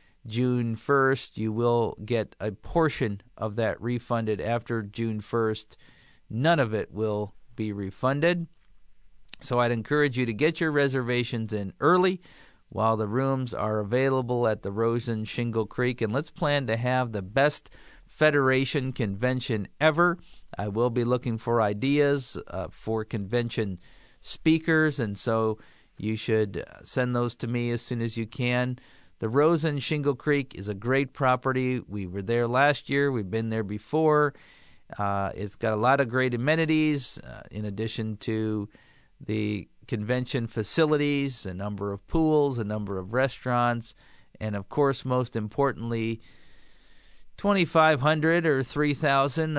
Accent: American